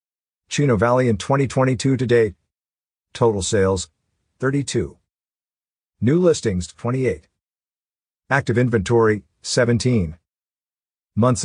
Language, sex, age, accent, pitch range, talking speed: English, male, 50-69, American, 95-130 Hz, 85 wpm